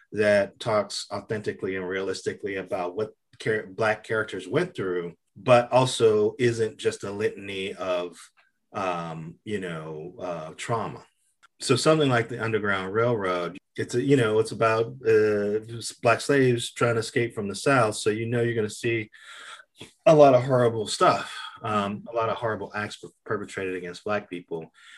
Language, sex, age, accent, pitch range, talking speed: English, male, 30-49, American, 95-120 Hz, 160 wpm